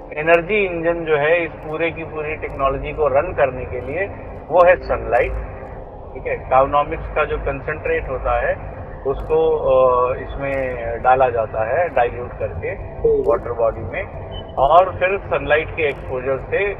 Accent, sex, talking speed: native, male, 145 wpm